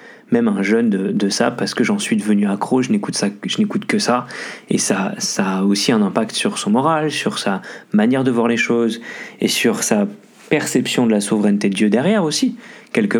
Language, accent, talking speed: French, French, 220 wpm